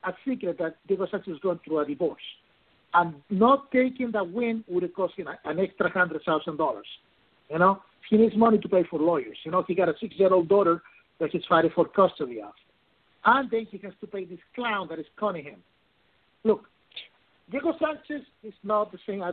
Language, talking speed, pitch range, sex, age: English, 200 wpm, 170-225 Hz, male, 50-69